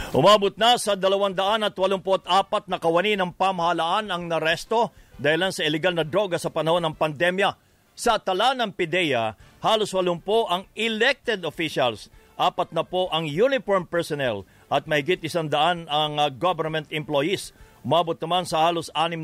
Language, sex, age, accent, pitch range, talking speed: English, male, 50-69, Filipino, 160-190 Hz, 155 wpm